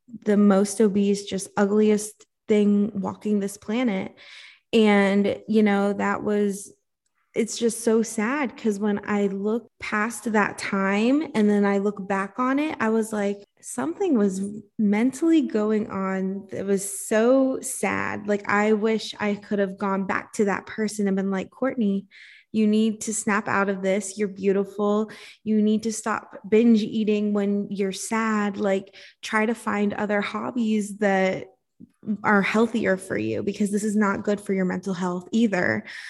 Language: English